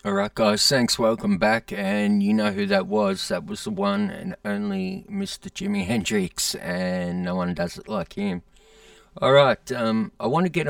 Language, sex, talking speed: English, male, 195 wpm